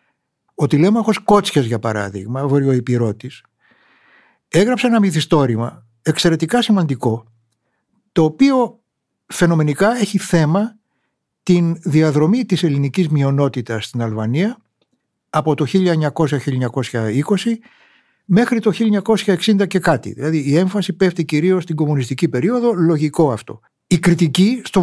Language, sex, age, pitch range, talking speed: Greek, male, 60-79, 130-200 Hz, 110 wpm